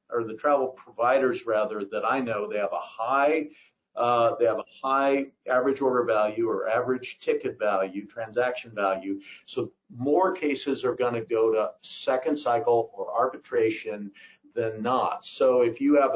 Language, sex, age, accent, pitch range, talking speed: English, male, 50-69, American, 120-170 Hz, 165 wpm